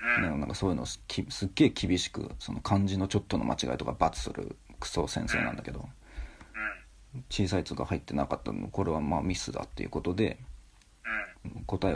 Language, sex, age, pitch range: Japanese, male, 40-59, 75-105 Hz